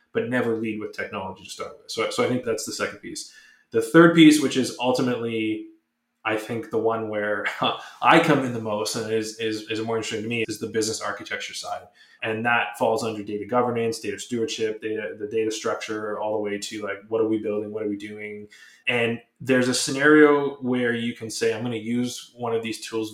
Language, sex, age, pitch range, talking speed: English, male, 20-39, 110-125 Hz, 225 wpm